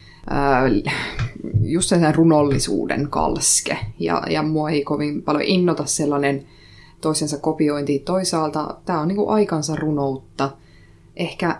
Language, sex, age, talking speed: Finnish, female, 20-39, 115 wpm